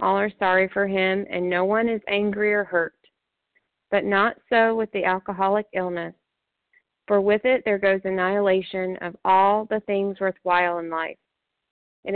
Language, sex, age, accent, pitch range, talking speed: English, female, 30-49, American, 180-210 Hz, 165 wpm